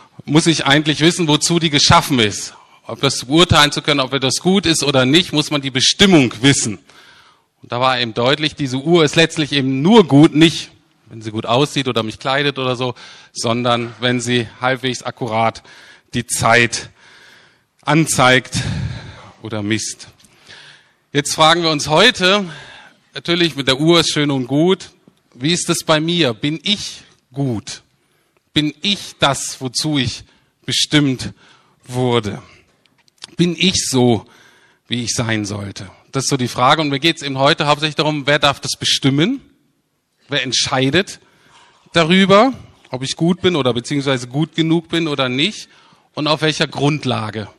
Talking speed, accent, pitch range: 160 wpm, German, 125-160 Hz